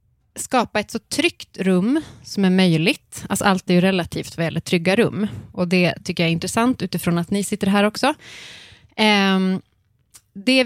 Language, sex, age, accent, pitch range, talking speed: Swedish, female, 30-49, native, 175-220 Hz, 160 wpm